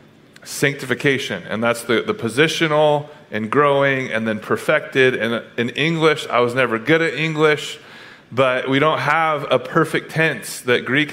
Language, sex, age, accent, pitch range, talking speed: English, male, 30-49, American, 125-155 Hz, 155 wpm